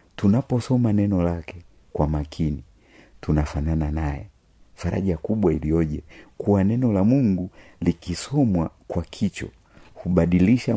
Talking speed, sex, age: 100 wpm, male, 50-69